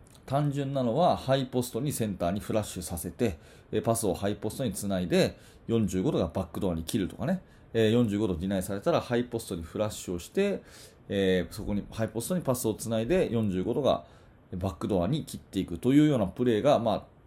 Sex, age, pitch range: male, 30-49, 105-145 Hz